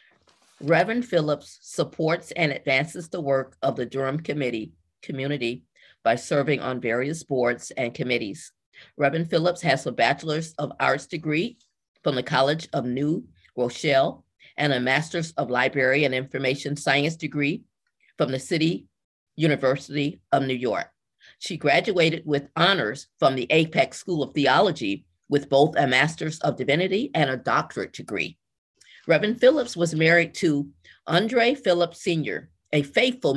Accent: American